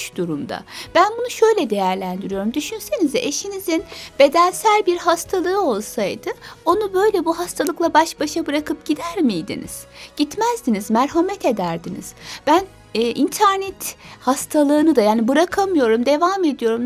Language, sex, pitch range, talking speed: Turkish, female, 255-390 Hz, 115 wpm